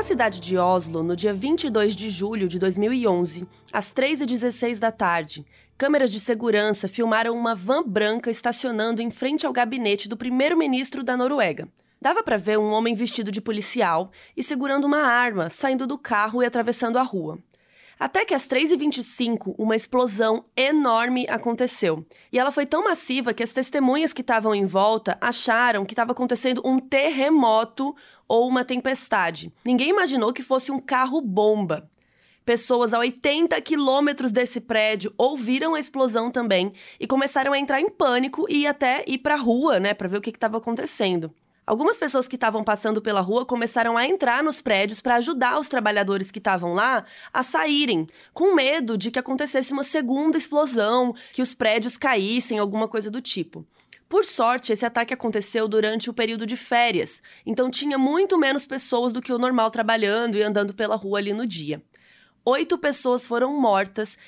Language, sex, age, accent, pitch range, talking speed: Portuguese, female, 20-39, Brazilian, 215-265 Hz, 170 wpm